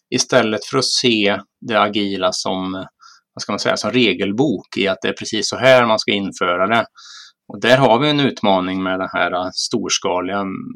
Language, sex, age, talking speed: Swedish, male, 30-49, 190 wpm